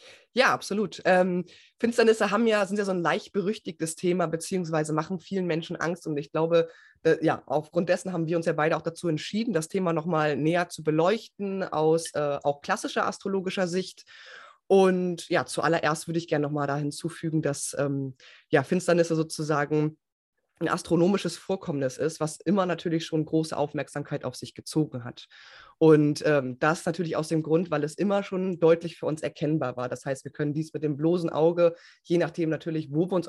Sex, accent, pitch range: female, German, 150-180 Hz